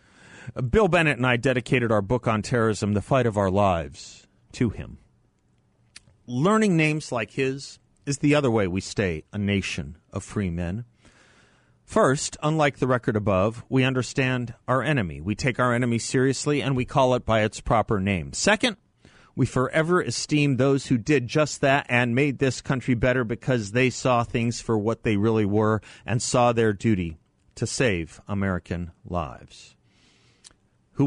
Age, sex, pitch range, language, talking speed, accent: 40-59, male, 110-150 Hz, English, 165 wpm, American